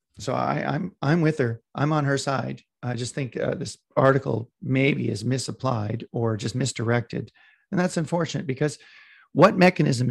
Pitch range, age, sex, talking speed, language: 120-150 Hz, 40-59, male, 165 wpm, English